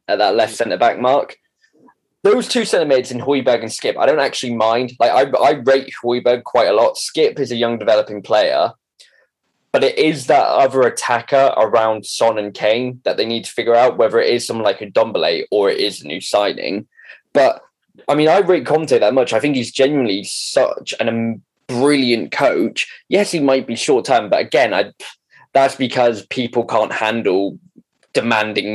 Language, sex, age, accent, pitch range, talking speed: English, male, 10-29, British, 120-155 Hz, 190 wpm